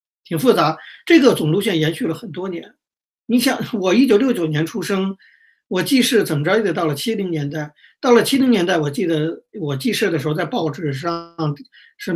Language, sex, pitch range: Chinese, male, 155-205 Hz